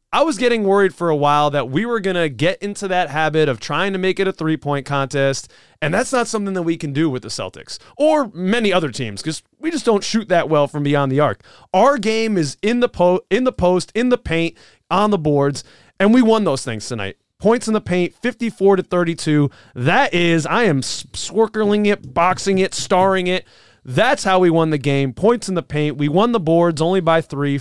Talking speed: 225 wpm